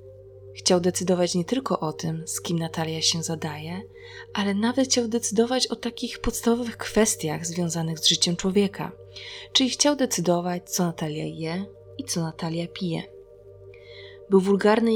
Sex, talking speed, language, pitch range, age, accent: female, 140 wpm, Polish, 160-225 Hz, 20-39, native